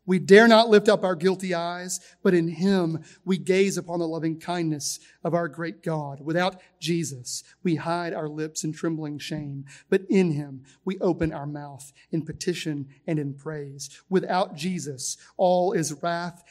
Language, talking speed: English, 170 wpm